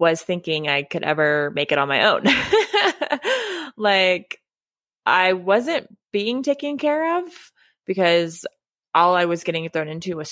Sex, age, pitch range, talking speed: female, 20-39, 155-205 Hz, 145 wpm